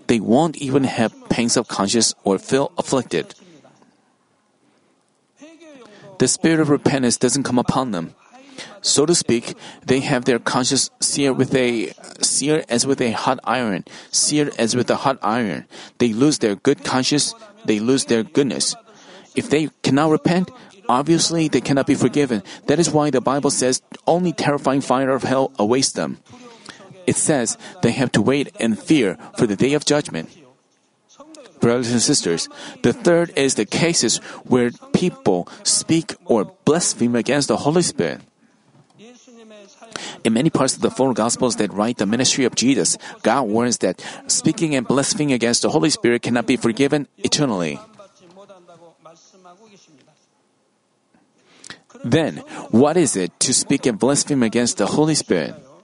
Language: Korean